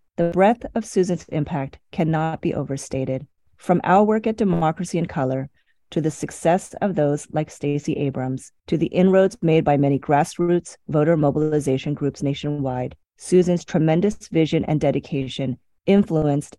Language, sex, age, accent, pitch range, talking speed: English, female, 30-49, American, 145-180 Hz, 145 wpm